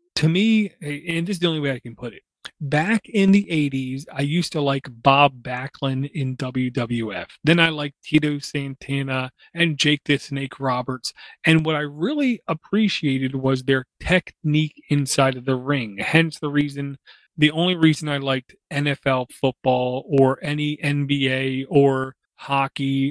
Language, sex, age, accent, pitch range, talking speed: English, male, 30-49, American, 135-155 Hz, 160 wpm